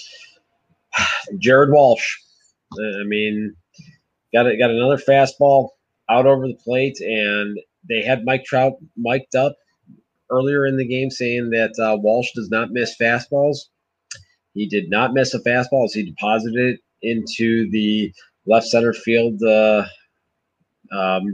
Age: 30-49